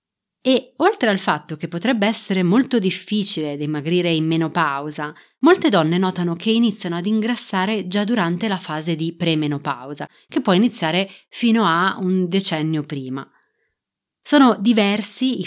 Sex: female